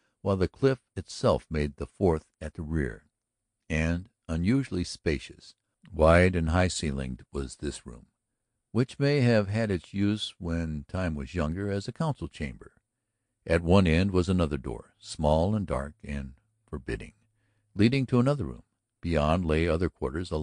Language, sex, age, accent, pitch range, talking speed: English, male, 60-79, American, 75-105 Hz, 155 wpm